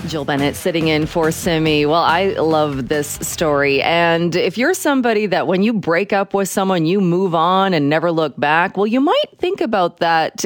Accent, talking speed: American, 200 wpm